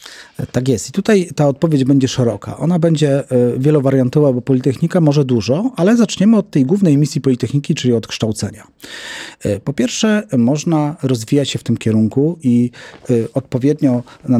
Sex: male